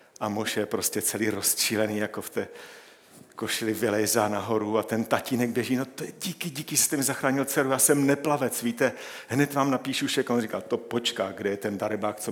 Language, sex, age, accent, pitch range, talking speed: Czech, male, 50-69, native, 105-125 Hz, 200 wpm